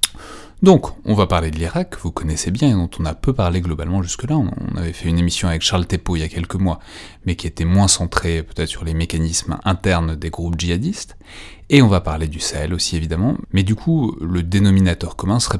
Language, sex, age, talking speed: French, male, 30-49, 225 wpm